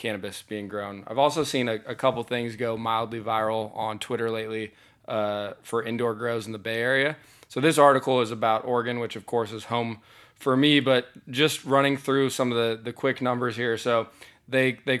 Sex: male